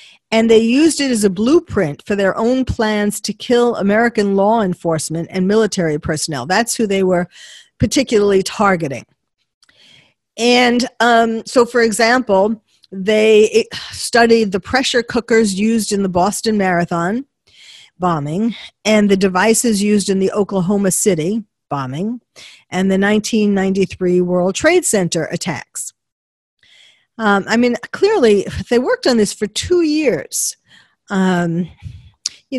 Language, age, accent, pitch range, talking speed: English, 50-69, American, 185-230 Hz, 130 wpm